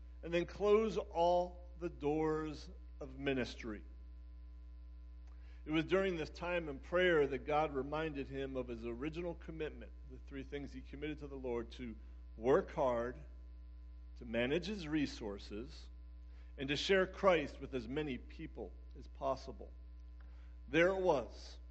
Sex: male